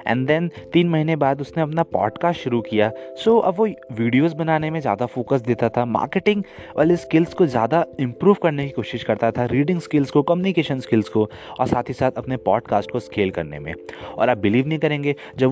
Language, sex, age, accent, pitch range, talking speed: Hindi, male, 20-39, native, 115-165 Hz, 210 wpm